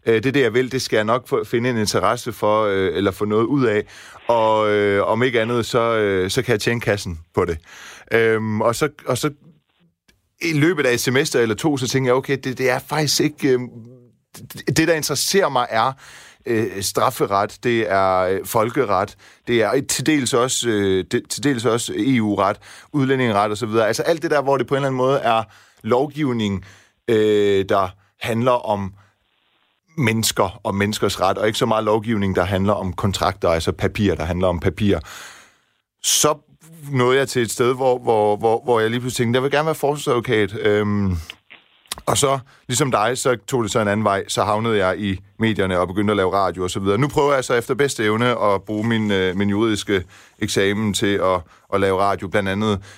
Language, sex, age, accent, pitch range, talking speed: Danish, male, 30-49, native, 100-130 Hz, 205 wpm